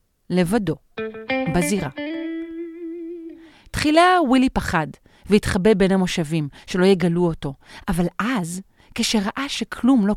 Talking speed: 95 wpm